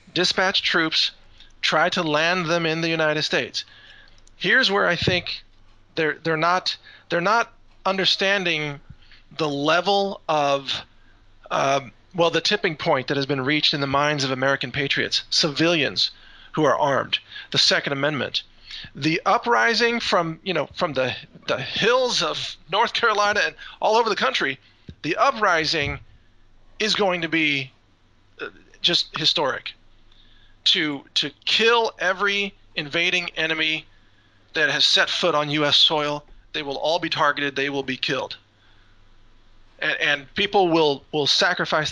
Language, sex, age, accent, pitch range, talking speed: English, male, 40-59, American, 135-180 Hz, 140 wpm